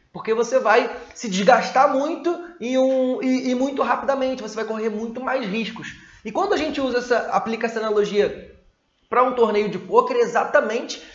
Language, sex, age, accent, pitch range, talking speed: Portuguese, male, 20-39, Brazilian, 205-255 Hz, 180 wpm